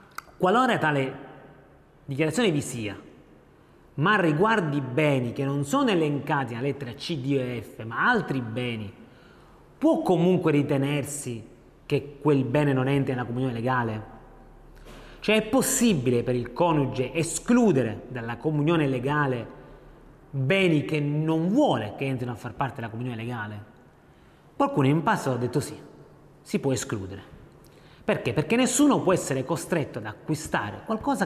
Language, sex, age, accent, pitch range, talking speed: Italian, male, 30-49, native, 130-180 Hz, 140 wpm